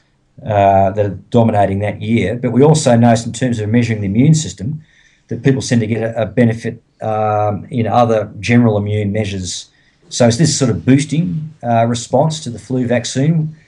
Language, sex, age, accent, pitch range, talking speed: English, male, 40-59, Australian, 110-130 Hz, 190 wpm